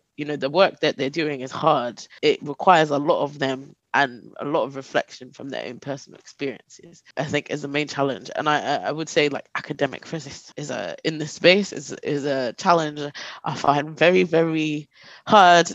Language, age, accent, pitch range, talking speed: English, 20-39, British, 150-195 Hz, 200 wpm